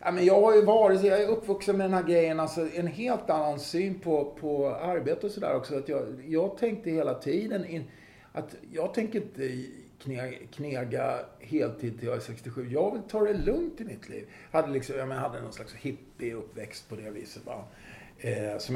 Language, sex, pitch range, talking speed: Swedish, male, 125-185 Hz, 195 wpm